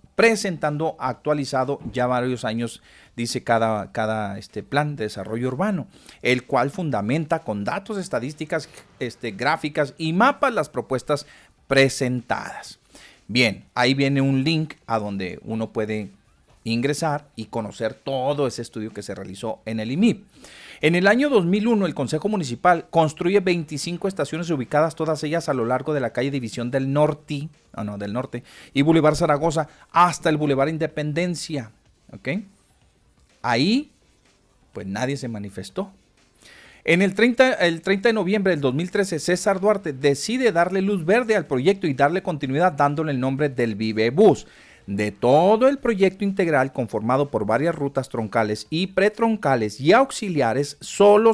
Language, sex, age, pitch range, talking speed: Spanish, male, 40-59, 125-185 Hz, 145 wpm